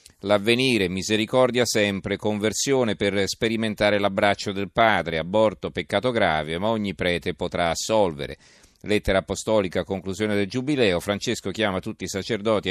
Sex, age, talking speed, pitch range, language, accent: male, 40-59, 130 wpm, 95-110 Hz, Italian, native